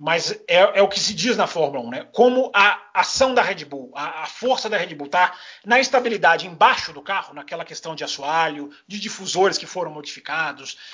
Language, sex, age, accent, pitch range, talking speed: Portuguese, male, 30-49, Brazilian, 190-260 Hz, 210 wpm